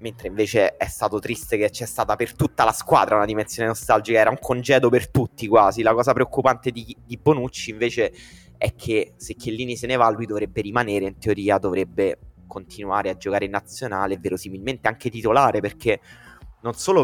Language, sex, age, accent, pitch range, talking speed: Italian, male, 20-39, native, 100-115 Hz, 185 wpm